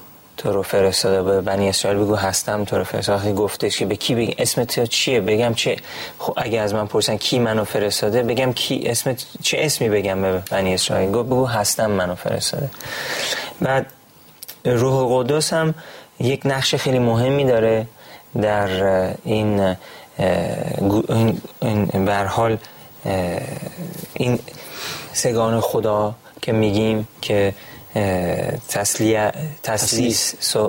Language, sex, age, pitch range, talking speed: Persian, male, 30-49, 105-130 Hz, 120 wpm